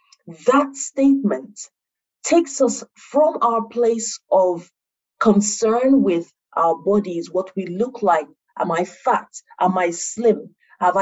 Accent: Nigerian